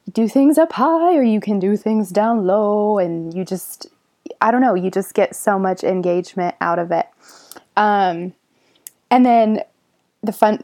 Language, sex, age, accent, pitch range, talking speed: English, female, 20-39, American, 185-230 Hz, 175 wpm